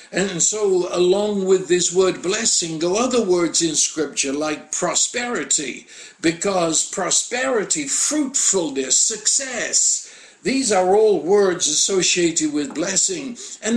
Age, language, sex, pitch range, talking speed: 60-79, English, male, 180-240 Hz, 115 wpm